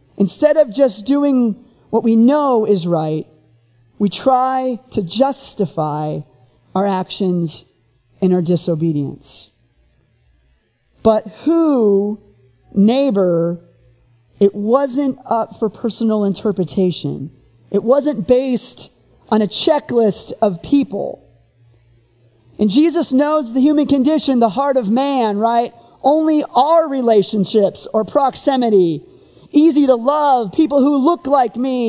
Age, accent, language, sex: 40-59, American, English, male